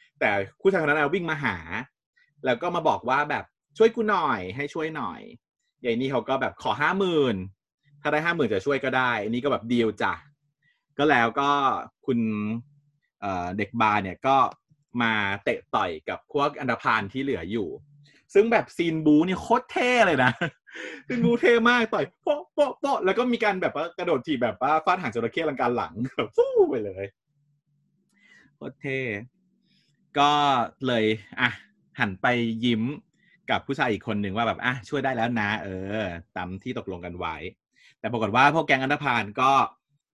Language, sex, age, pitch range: Thai, male, 20-39, 110-150 Hz